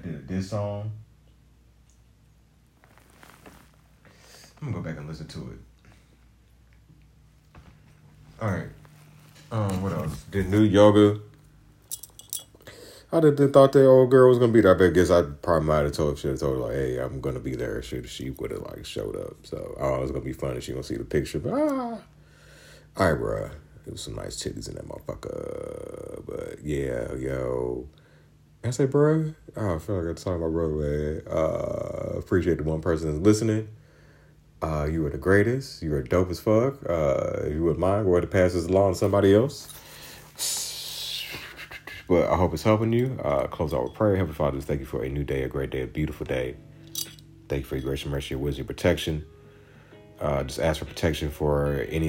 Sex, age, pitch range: male, 40-59, 75-120 Hz